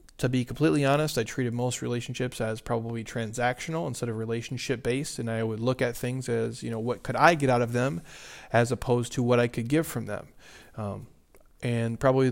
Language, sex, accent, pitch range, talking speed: English, male, American, 115-135 Hz, 205 wpm